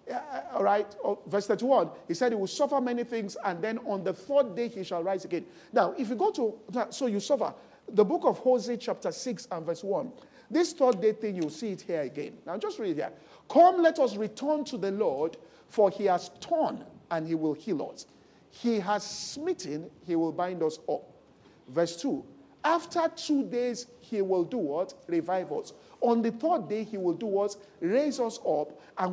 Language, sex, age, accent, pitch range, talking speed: English, male, 50-69, Nigerian, 200-295 Hz, 200 wpm